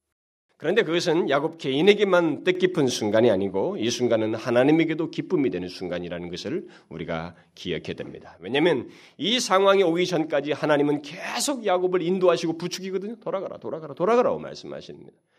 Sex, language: male, Korean